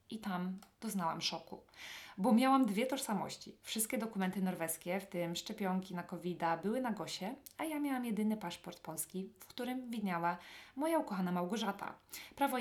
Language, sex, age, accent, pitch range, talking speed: English, female, 20-39, Polish, 180-245 Hz, 150 wpm